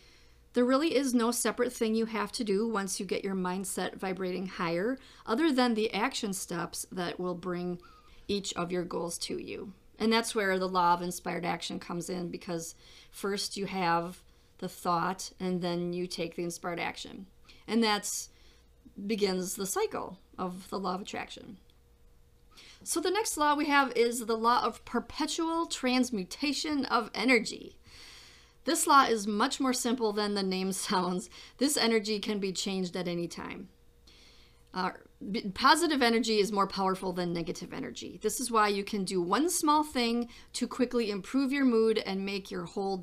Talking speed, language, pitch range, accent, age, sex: 170 wpm, English, 180-240 Hz, American, 40-59, female